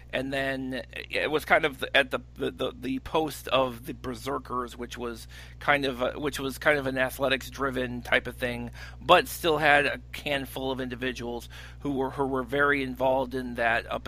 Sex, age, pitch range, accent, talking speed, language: male, 40-59, 120-160 Hz, American, 200 wpm, English